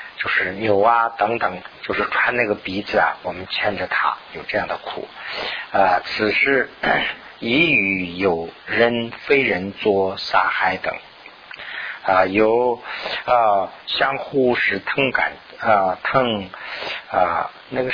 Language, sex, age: Chinese, male, 50-69